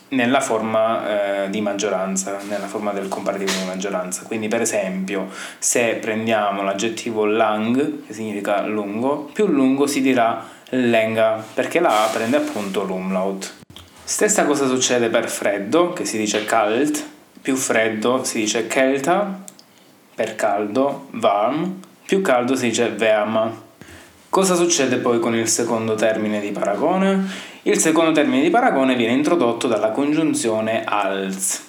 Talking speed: 140 wpm